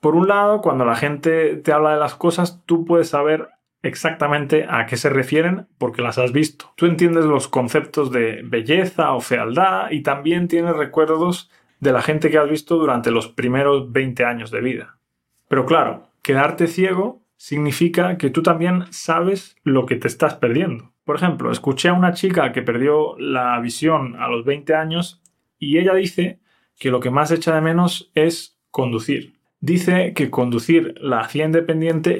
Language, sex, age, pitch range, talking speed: Spanish, male, 20-39, 140-170 Hz, 175 wpm